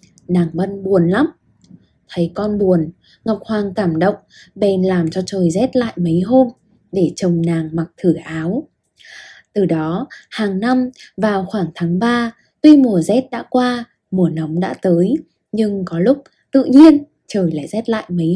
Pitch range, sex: 180-240 Hz, female